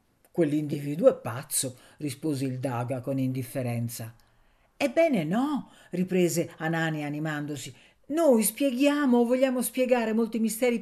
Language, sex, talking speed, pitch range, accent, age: Italian, female, 110 wpm, 135-225 Hz, native, 50-69